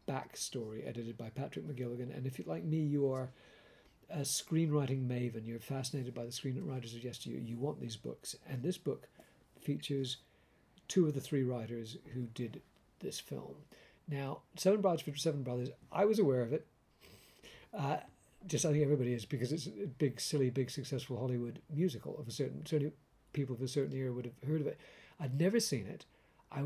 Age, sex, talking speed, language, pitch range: 50-69, male, 190 wpm, English, 125-155 Hz